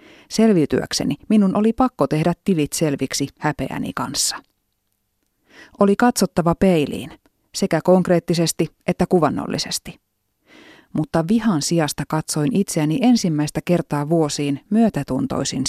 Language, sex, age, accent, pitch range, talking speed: Finnish, female, 30-49, native, 150-200 Hz, 95 wpm